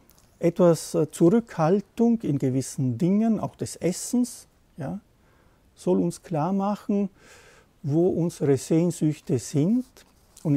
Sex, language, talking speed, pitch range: male, German, 95 wpm, 135-175 Hz